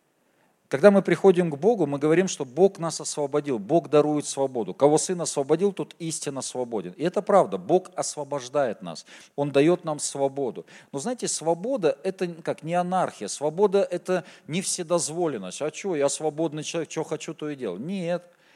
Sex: male